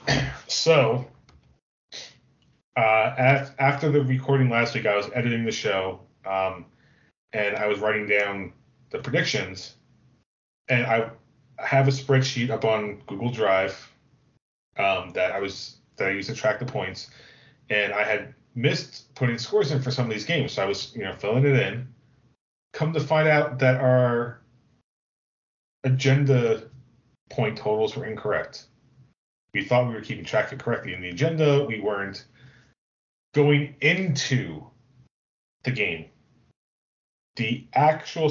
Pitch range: 110-140 Hz